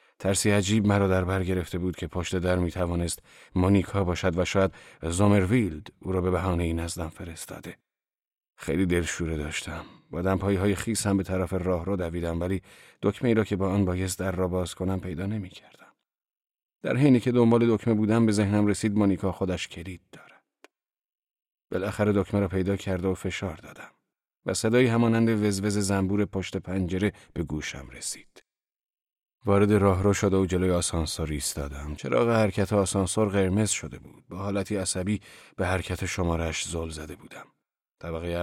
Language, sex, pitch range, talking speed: Persian, male, 90-105 Hz, 165 wpm